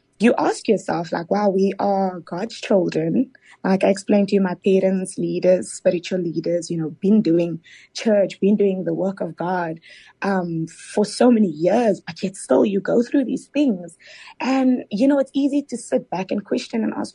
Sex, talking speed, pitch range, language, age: female, 195 wpm, 180-225 Hz, English, 20-39